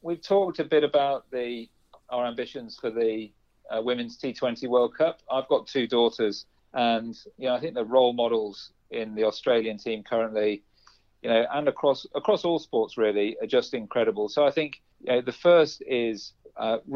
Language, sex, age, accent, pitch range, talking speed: English, male, 40-59, British, 115-135 Hz, 190 wpm